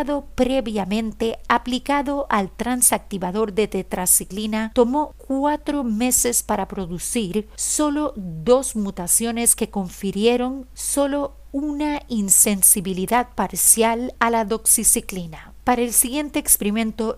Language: Spanish